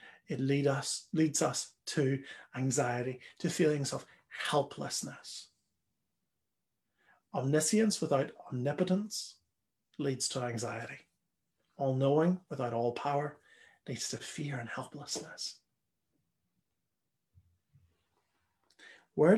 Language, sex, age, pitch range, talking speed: English, male, 40-59, 120-160 Hz, 85 wpm